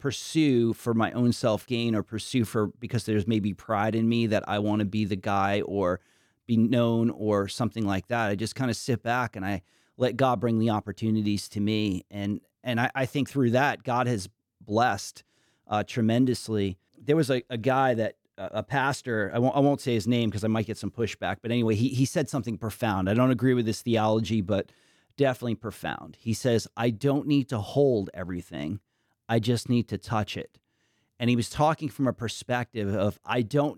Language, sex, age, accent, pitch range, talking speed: English, male, 30-49, American, 105-125 Hz, 210 wpm